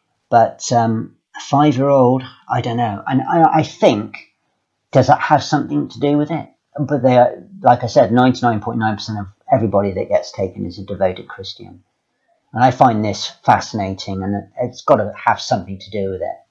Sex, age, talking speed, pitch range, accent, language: male, 40-59, 205 wpm, 100-130 Hz, British, English